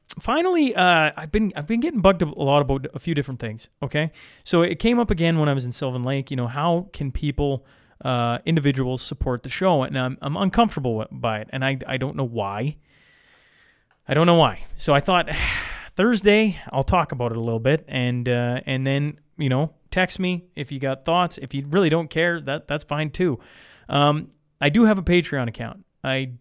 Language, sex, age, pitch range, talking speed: English, male, 30-49, 130-165 Hz, 210 wpm